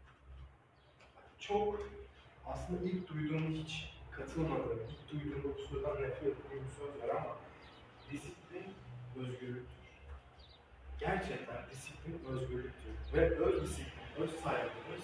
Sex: male